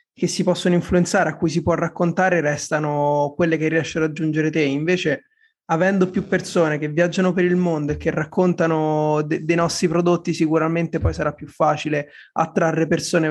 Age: 20-39